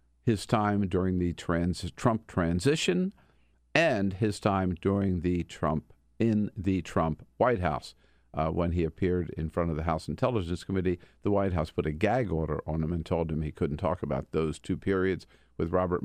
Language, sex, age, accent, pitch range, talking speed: English, male, 50-69, American, 85-120 Hz, 185 wpm